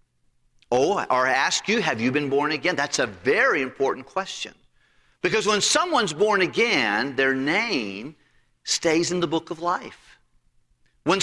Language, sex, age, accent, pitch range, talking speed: English, male, 50-69, American, 160-225 Hz, 150 wpm